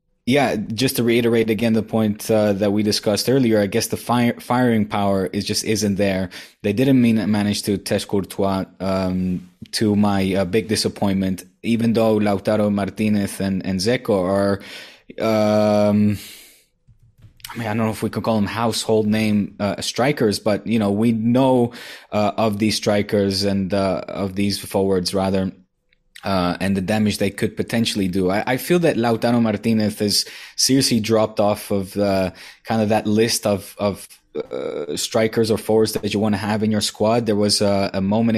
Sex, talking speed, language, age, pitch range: male, 180 wpm, English, 20-39, 100-115 Hz